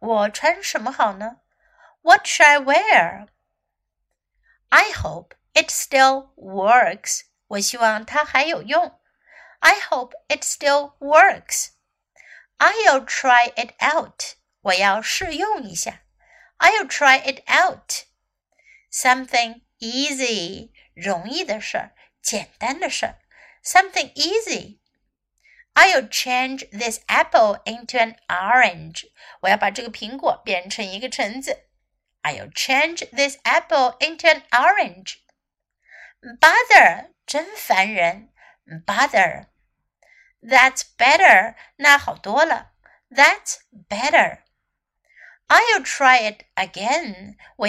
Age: 60-79